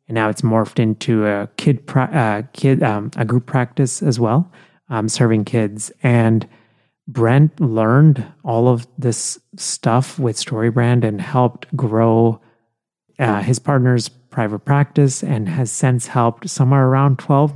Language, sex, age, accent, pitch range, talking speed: English, male, 30-49, American, 110-140 Hz, 145 wpm